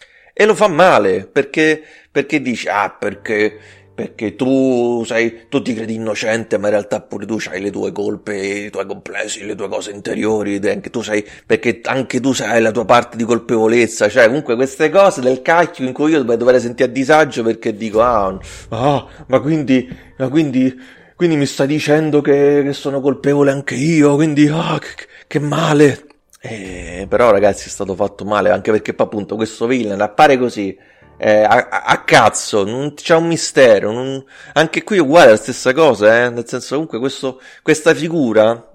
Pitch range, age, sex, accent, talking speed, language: 110-150 Hz, 30-49, male, native, 185 wpm, Italian